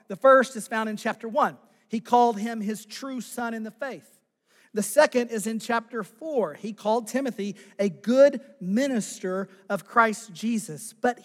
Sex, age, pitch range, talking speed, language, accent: male, 40-59, 200-255 Hz, 170 wpm, English, American